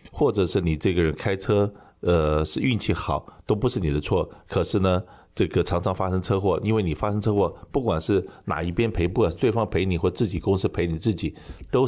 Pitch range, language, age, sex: 85-105 Hz, Chinese, 50-69, male